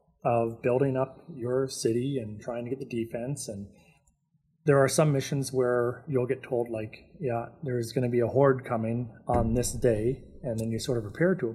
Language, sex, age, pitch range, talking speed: English, male, 30-49, 120-145 Hz, 210 wpm